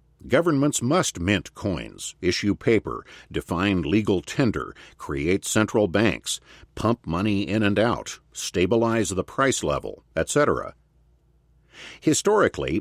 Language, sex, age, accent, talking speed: English, male, 50-69, American, 110 wpm